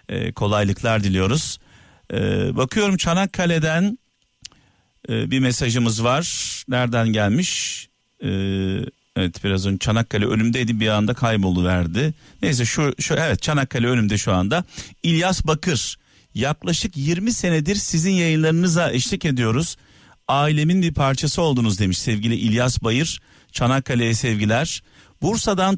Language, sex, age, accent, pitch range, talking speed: Turkish, male, 50-69, native, 115-175 Hz, 105 wpm